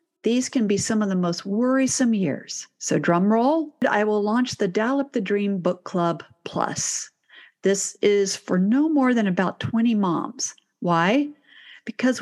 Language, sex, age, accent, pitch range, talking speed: English, female, 50-69, American, 180-235 Hz, 155 wpm